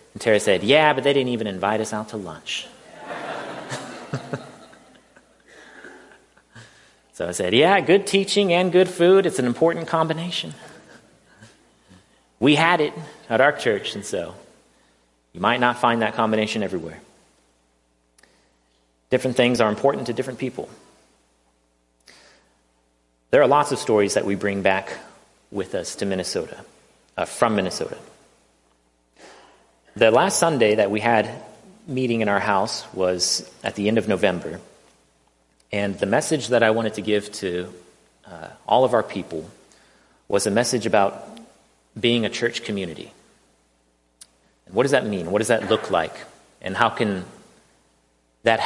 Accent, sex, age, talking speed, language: American, male, 30-49, 140 wpm, English